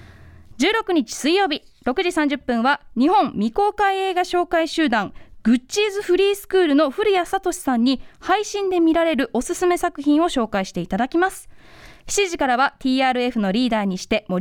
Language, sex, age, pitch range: Japanese, female, 20-39, 250-360 Hz